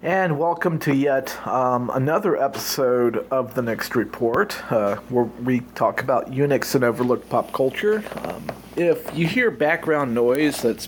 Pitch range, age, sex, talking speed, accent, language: 115-140 Hz, 40-59, male, 155 wpm, American, English